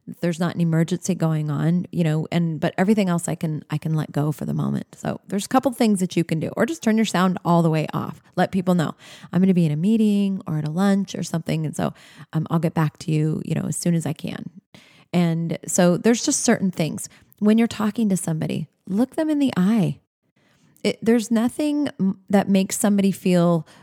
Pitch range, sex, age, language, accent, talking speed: 165-195 Hz, female, 30-49, English, American, 230 wpm